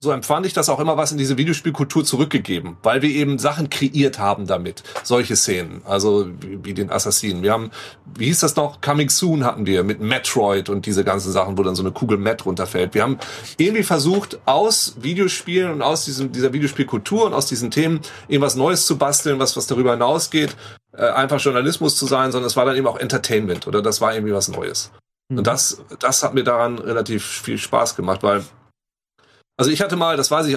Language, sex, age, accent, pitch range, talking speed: German, male, 30-49, German, 110-150 Hz, 210 wpm